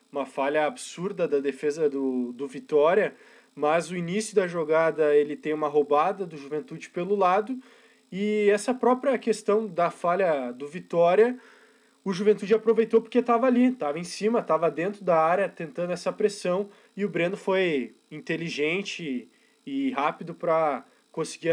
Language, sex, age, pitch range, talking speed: Portuguese, male, 20-39, 160-210 Hz, 150 wpm